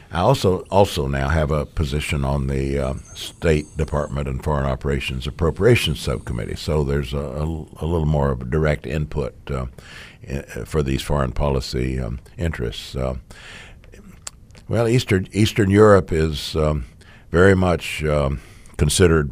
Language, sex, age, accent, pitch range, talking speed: English, male, 60-79, American, 70-90 Hz, 145 wpm